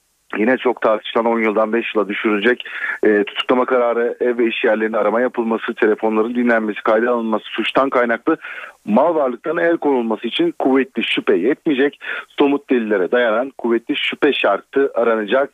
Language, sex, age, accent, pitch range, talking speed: Turkish, male, 40-59, native, 115-150 Hz, 145 wpm